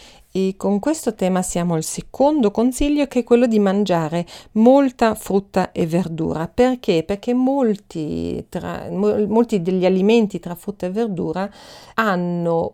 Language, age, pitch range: Italian, 40-59, 170-215 Hz